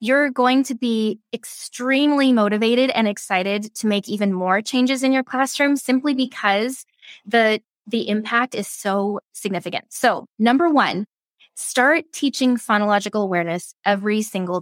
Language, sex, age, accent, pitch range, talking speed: English, female, 20-39, American, 200-255 Hz, 135 wpm